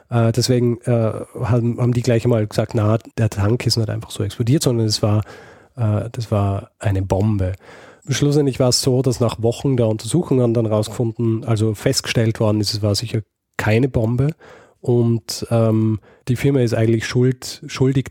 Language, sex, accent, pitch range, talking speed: German, male, German, 110-125 Hz, 170 wpm